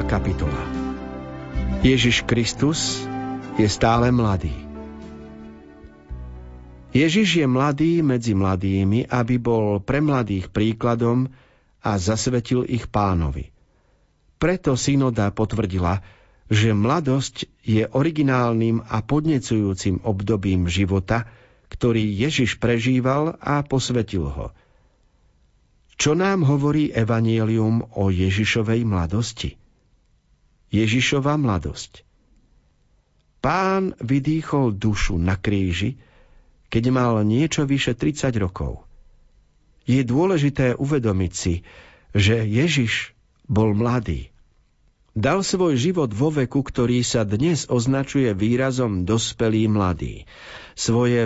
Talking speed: 90 wpm